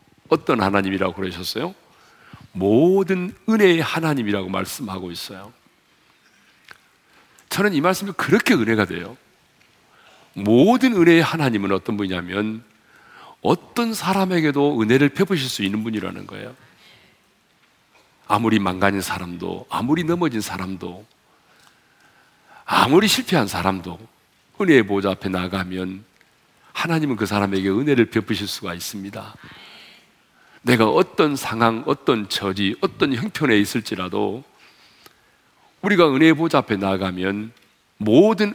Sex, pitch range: male, 95-140 Hz